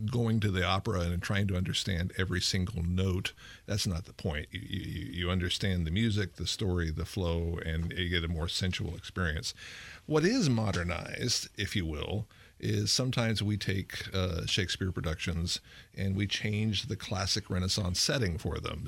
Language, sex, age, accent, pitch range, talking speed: English, male, 50-69, American, 90-105 Hz, 170 wpm